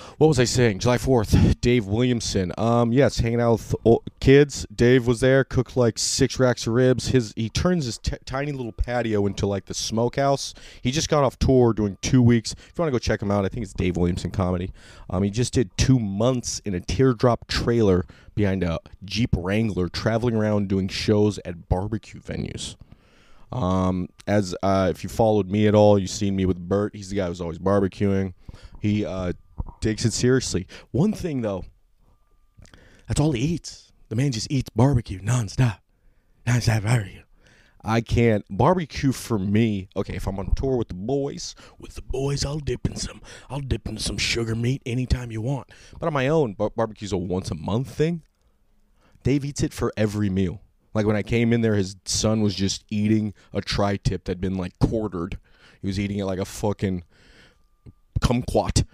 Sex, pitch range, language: male, 95-125 Hz, English